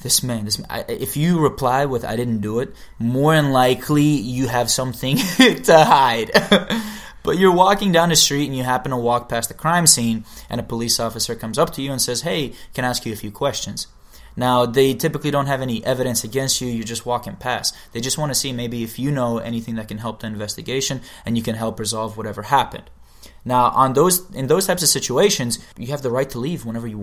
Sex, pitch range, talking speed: male, 115-140 Hz, 230 wpm